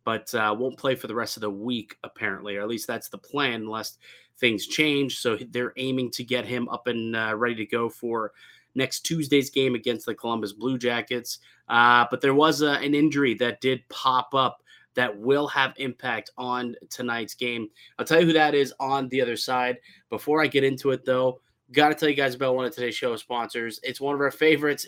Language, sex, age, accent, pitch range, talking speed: English, male, 20-39, American, 125-150 Hz, 215 wpm